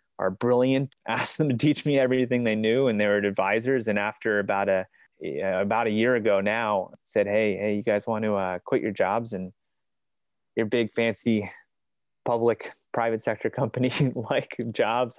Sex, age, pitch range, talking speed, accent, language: male, 20-39, 105-125 Hz, 175 wpm, American, English